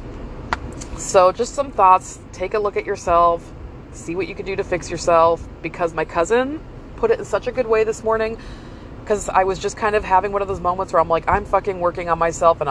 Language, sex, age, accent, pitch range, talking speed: English, female, 20-39, American, 155-200 Hz, 230 wpm